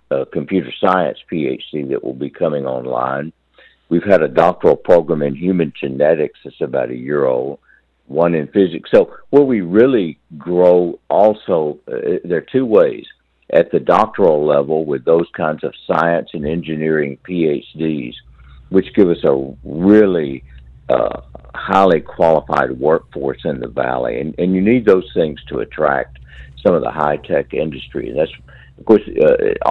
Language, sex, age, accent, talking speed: English, male, 60-79, American, 160 wpm